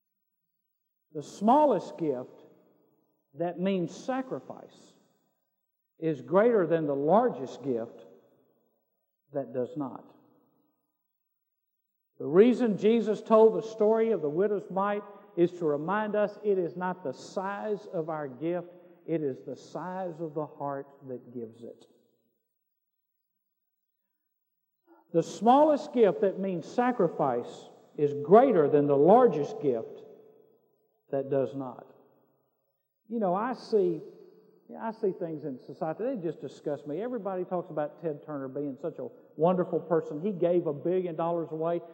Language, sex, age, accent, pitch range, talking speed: English, male, 50-69, American, 160-220 Hz, 135 wpm